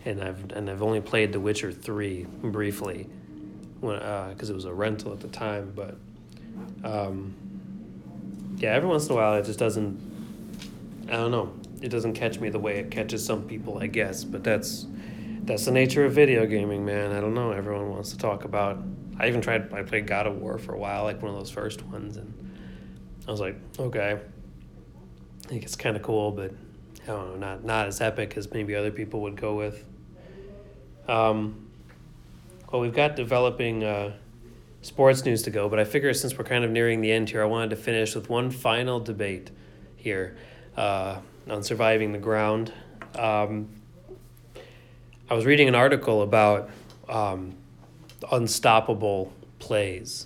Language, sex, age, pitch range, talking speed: English, male, 30-49, 100-110 Hz, 180 wpm